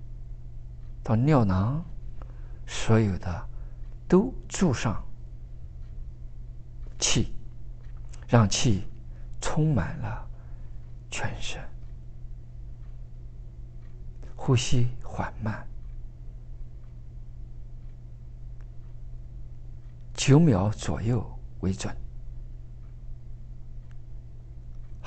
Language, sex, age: Chinese, male, 50-69